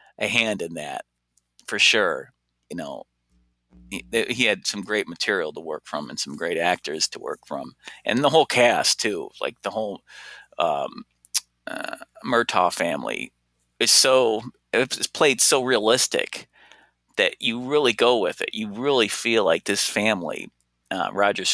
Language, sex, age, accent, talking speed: English, male, 40-59, American, 155 wpm